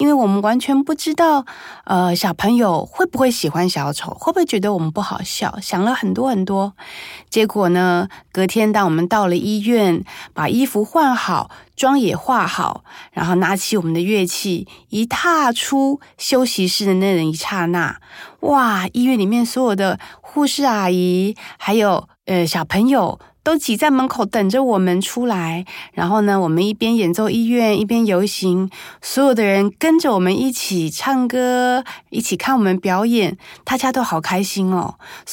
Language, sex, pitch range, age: Chinese, female, 180-255 Hz, 30-49